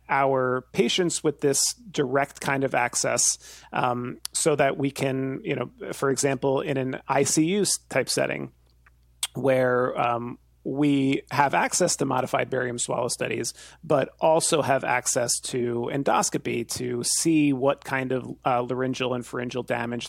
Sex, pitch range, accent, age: male, 125-145 Hz, American, 30-49